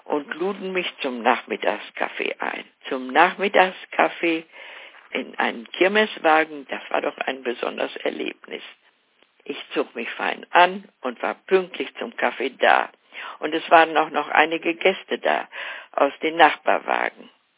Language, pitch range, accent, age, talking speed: German, 160-215 Hz, German, 60-79, 135 wpm